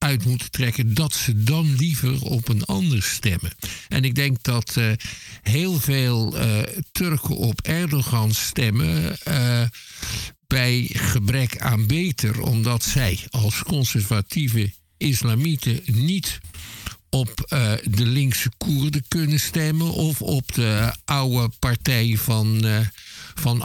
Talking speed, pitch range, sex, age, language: 125 wpm, 110-145 Hz, male, 50-69, Dutch